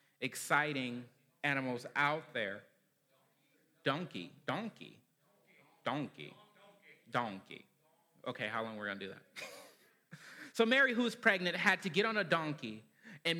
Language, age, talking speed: English, 30-49, 135 wpm